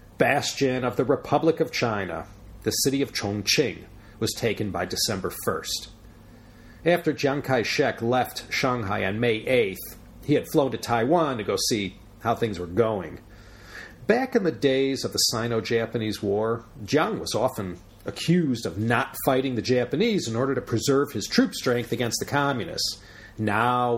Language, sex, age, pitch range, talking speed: English, male, 40-59, 105-135 Hz, 160 wpm